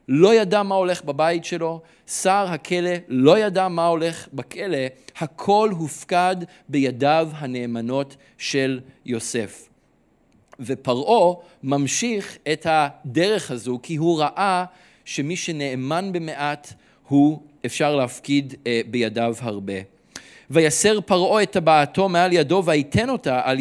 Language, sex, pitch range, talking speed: Hebrew, male, 140-190 Hz, 110 wpm